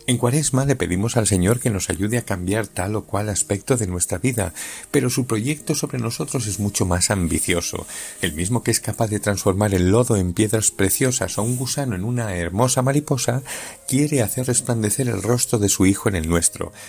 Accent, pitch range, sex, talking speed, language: Spanish, 95-125 Hz, male, 205 wpm, Spanish